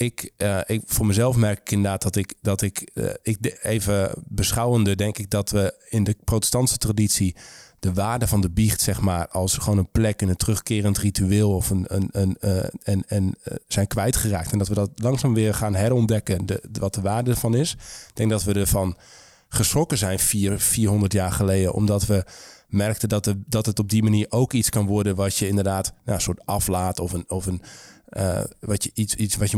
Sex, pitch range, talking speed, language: male, 100-115 Hz, 215 wpm, Dutch